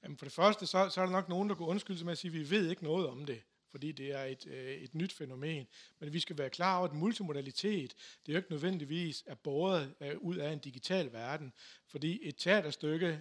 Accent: native